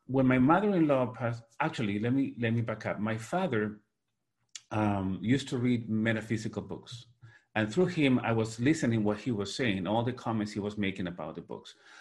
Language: English